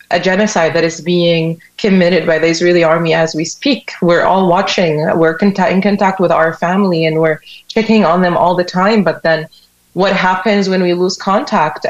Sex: female